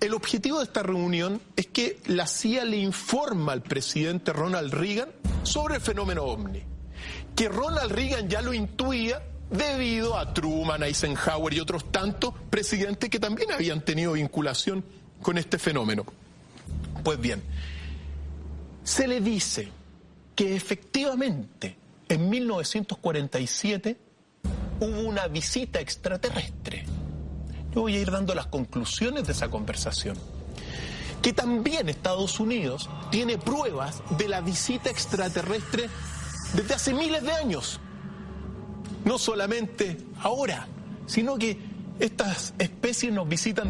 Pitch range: 145-220 Hz